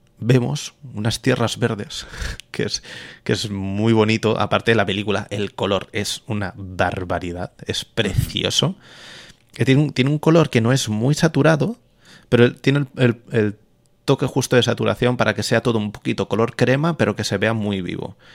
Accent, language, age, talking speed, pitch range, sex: Spanish, Spanish, 30-49, 175 wpm, 95-115 Hz, male